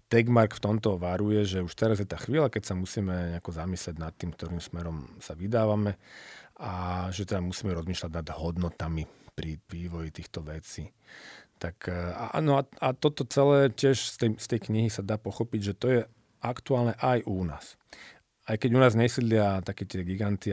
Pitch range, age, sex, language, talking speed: 85-110 Hz, 40-59, male, Slovak, 185 wpm